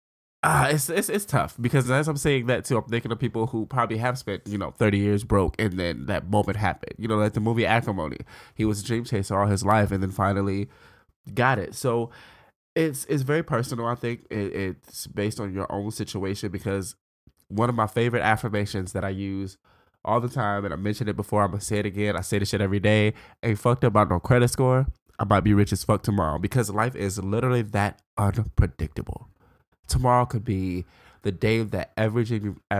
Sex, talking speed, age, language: male, 220 wpm, 20-39, English